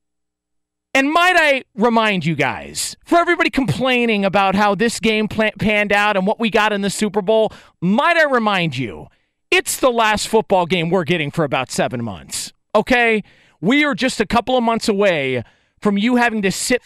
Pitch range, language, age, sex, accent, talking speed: 175-245 Hz, English, 40-59, male, American, 185 wpm